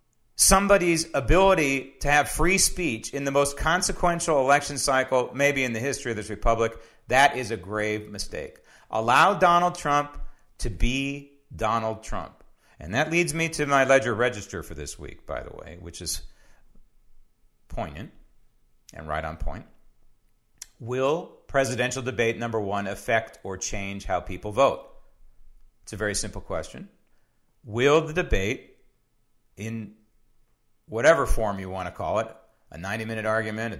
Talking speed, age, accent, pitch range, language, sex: 145 wpm, 40-59, American, 105-140 Hz, English, male